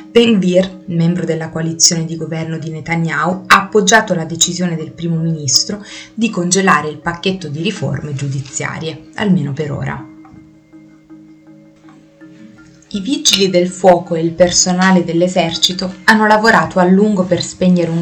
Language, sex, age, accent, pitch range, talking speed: Italian, female, 20-39, native, 160-180 Hz, 135 wpm